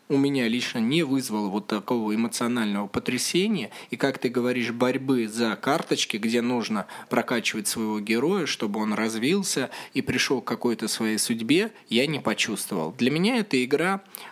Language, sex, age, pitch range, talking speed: Russian, male, 20-39, 120-155 Hz, 155 wpm